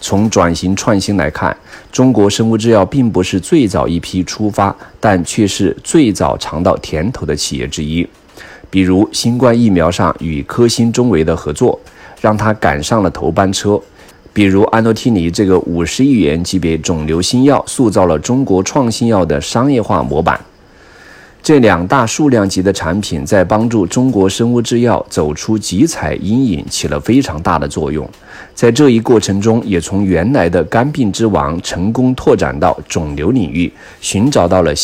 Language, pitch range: Chinese, 90-120 Hz